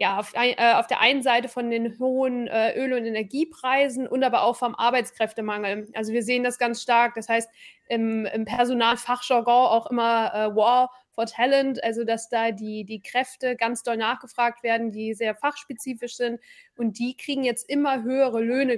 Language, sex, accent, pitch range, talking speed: German, female, German, 225-255 Hz, 180 wpm